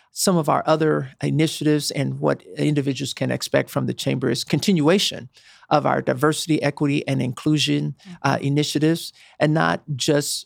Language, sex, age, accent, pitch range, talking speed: English, male, 50-69, American, 140-160 Hz, 150 wpm